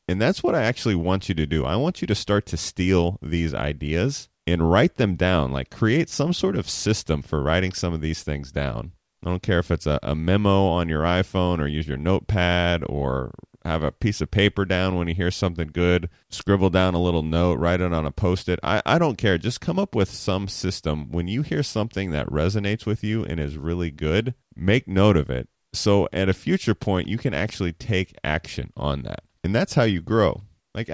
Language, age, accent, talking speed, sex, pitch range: English, 30-49, American, 225 wpm, male, 80-105 Hz